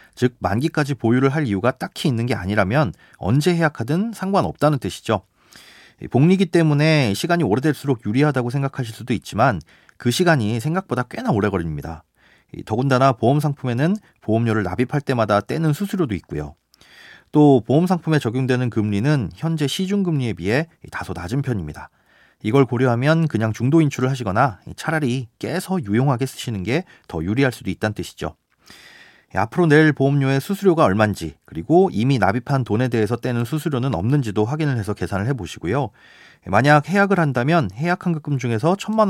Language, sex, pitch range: Korean, male, 110-155 Hz